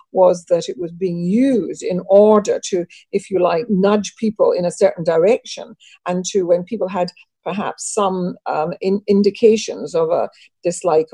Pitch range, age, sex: 180-230 Hz, 50-69, female